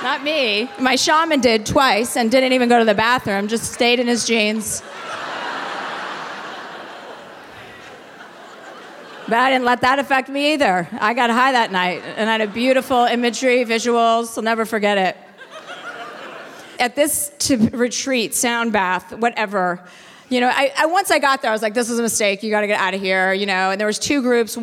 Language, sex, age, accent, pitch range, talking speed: English, female, 40-59, American, 220-270 Hz, 190 wpm